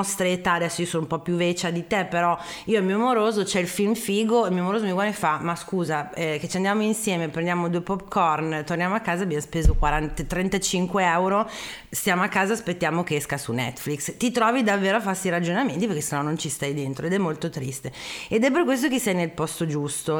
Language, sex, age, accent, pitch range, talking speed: Italian, female, 30-49, native, 170-215 Hz, 225 wpm